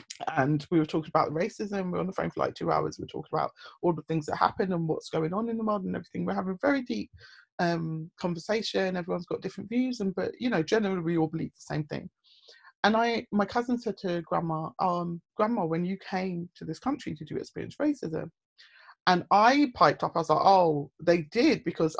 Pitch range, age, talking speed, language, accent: 155-210 Hz, 30-49, 230 wpm, English, British